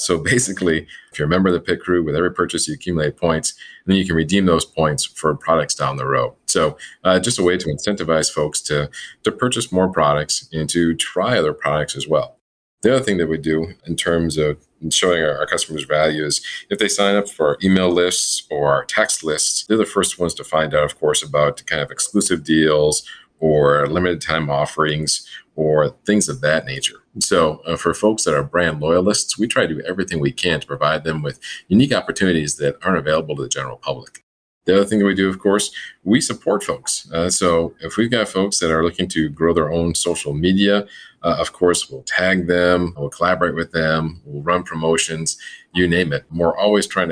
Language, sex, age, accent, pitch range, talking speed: English, male, 40-59, American, 80-90 Hz, 220 wpm